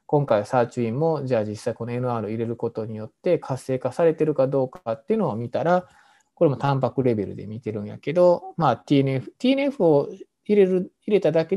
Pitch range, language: 120-165 Hz, Japanese